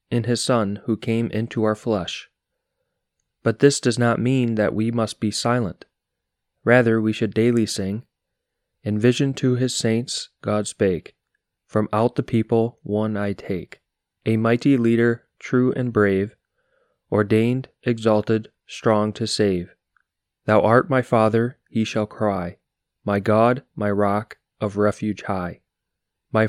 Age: 20-39